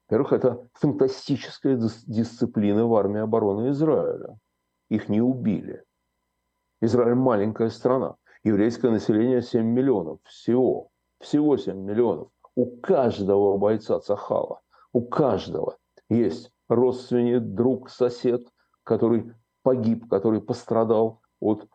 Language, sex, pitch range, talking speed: Russian, male, 100-125 Hz, 100 wpm